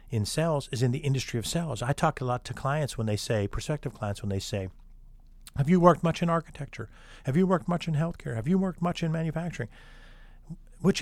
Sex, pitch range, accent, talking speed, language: male, 110-155 Hz, American, 225 wpm, English